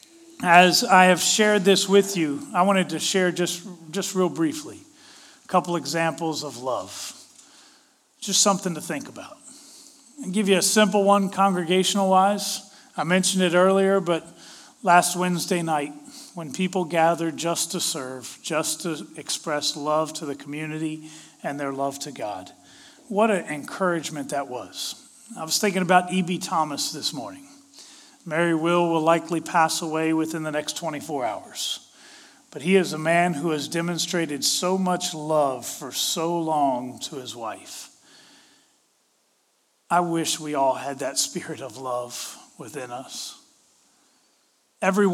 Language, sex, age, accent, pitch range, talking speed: English, male, 40-59, American, 155-195 Hz, 150 wpm